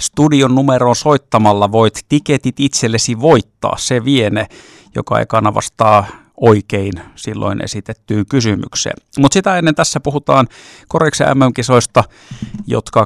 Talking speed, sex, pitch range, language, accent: 110 wpm, male, 110-135 Hz, Finnish, native